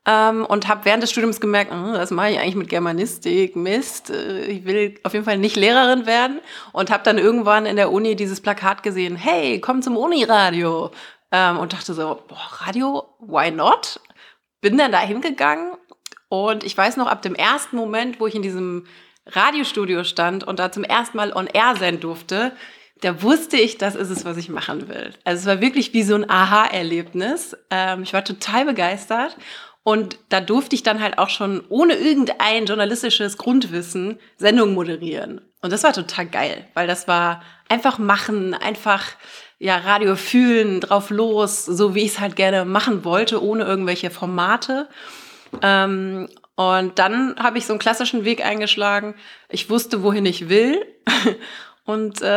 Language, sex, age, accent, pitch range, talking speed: German, female, 30-49, German, 185-230 Hz, 170 wpm